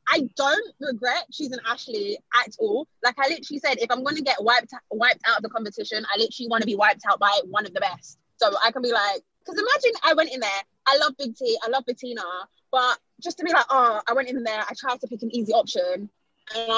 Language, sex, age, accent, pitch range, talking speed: English, female, 20-39, British, 225-300 Hz, 255 wpm